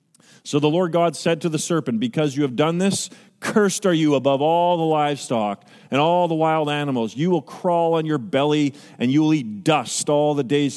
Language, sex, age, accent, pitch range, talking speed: English, male, 40-59, American, 140-185 Hz, 215 wpm